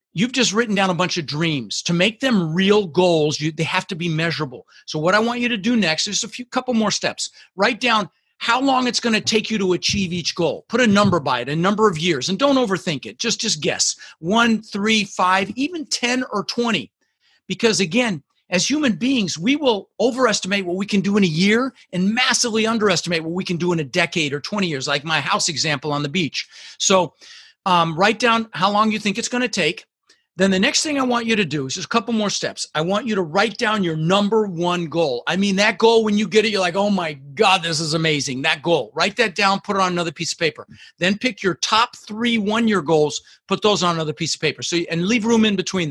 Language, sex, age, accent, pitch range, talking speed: English, male, 40-59, American, 170-225 Hz, 245 wpm